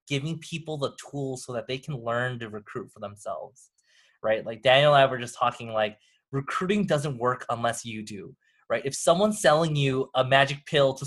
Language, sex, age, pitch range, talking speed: English, male, 20-39, 115-145 Hz, 200 wpm